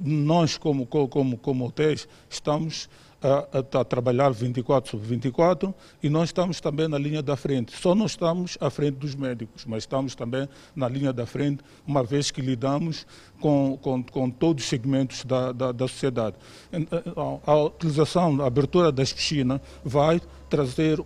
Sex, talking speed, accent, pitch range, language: male, 160 wpm, Brazilian, 135-160 Hz, Portuguese